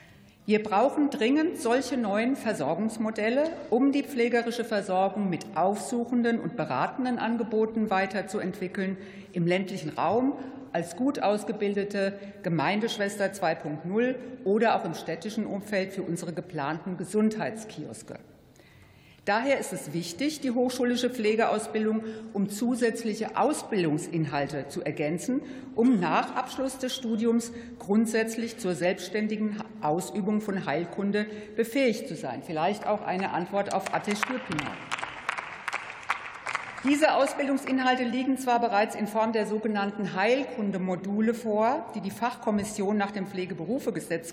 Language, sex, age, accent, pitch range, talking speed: German, female, 50-69, German, 190-235 Hz, 110 wpm